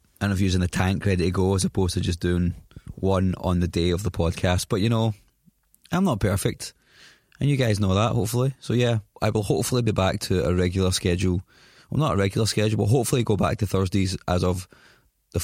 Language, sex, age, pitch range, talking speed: English, male, 20-39, 95-120 Hz, 220 wpm